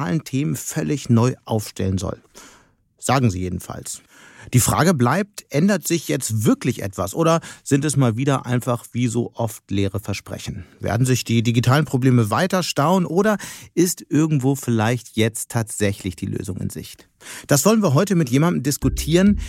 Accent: German